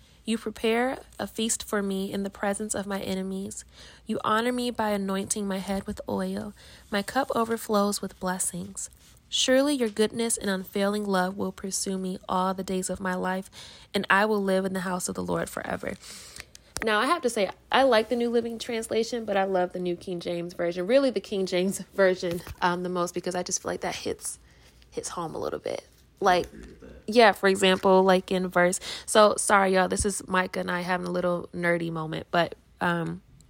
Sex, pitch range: female, 185-215 Hz